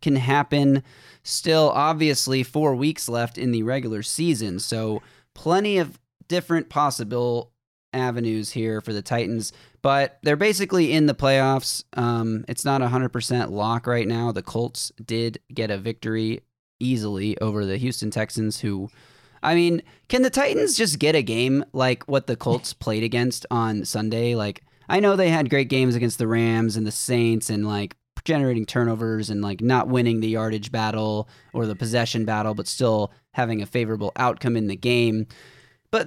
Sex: male